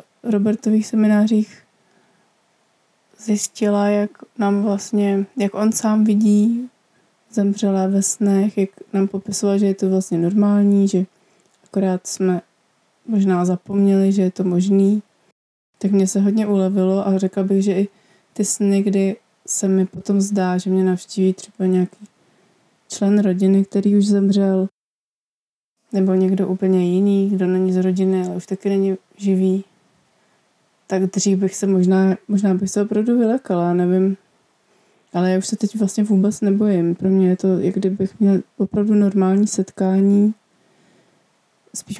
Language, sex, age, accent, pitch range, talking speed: Czech, female, 20-39, native, 190-205 Hz, 145 wpm